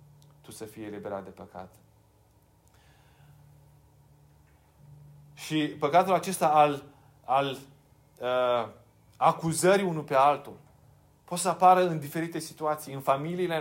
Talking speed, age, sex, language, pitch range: 100 wpm, 30-49, male, Romanian, 120-165 Hz